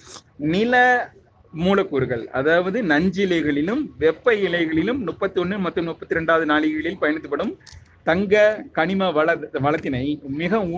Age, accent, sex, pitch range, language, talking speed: 30-49, native, male, 145-195 Hz, Tamil, 95 wpm